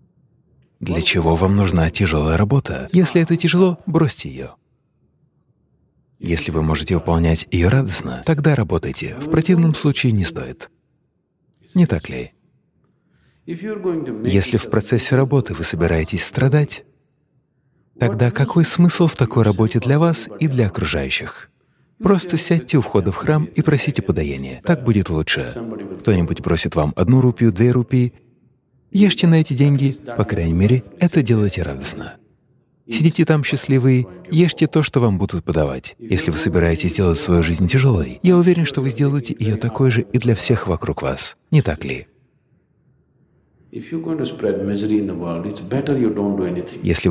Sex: male